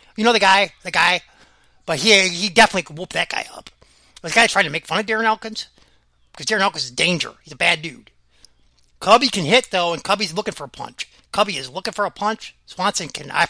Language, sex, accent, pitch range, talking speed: English, male, American, 165-235 Hz, 235 wpm